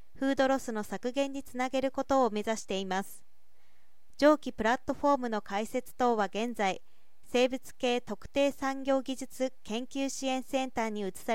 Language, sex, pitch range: Japanese, female, 210-265 Hz